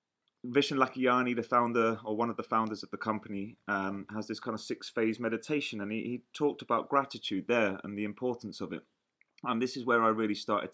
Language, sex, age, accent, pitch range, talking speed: English, male, 30-49, British, 105-140 Hz, 220 wpm